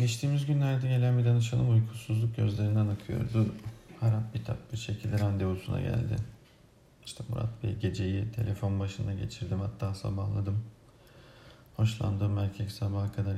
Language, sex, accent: Turkish, male, native